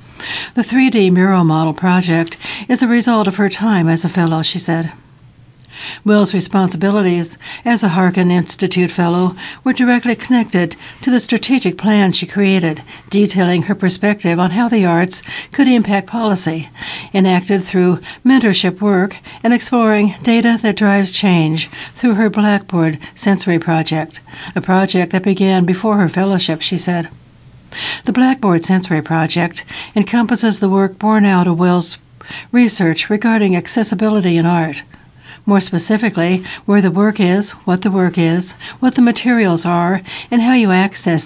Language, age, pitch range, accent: English, 60-79, 170-210 Hz, American